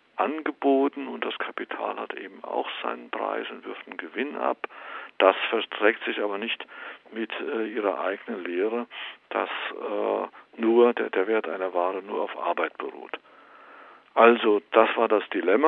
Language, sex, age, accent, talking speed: German, male, 60-79, German, 155 wpm